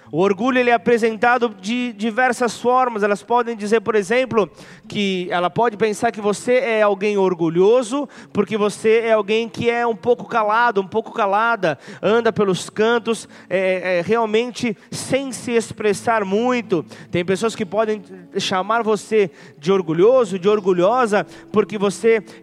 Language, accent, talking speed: Portuguese, Brazilian, 140 wpm